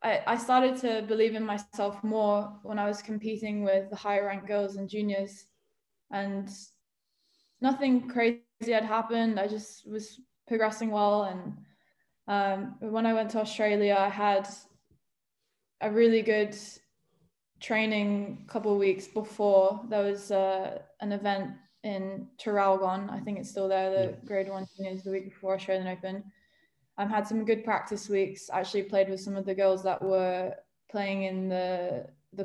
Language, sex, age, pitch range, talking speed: English, female, 10-29, 195-220 Hz, 155 wpm